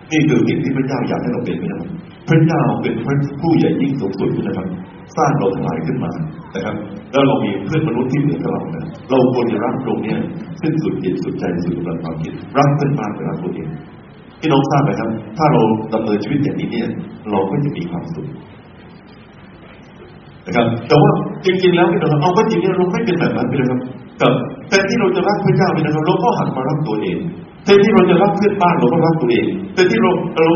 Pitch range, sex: 130-180 Hz, male